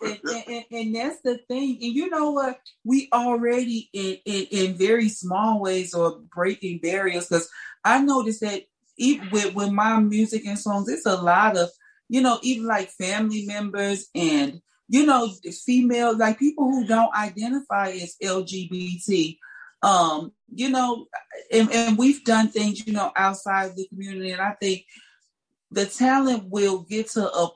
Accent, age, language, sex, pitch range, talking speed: American, 40-59, English, female, 175-230 Hz, 165 wpm